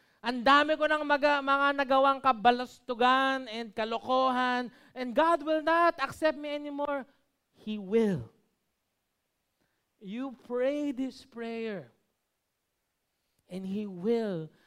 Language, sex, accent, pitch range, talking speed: Filipino, male, native, 175-275 Hz, 100 wpm